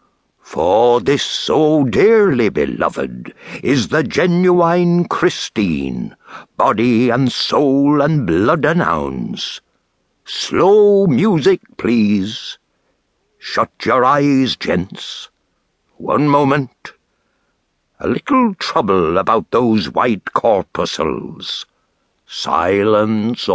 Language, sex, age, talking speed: English, male, 60-79, 80 wpm